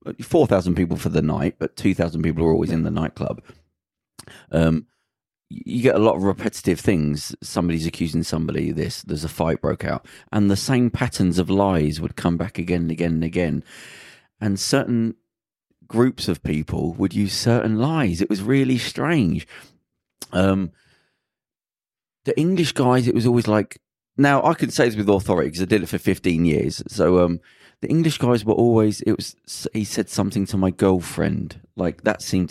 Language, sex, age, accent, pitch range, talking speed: English, male, 30-49, British, 90-120 Hz, 180 wpm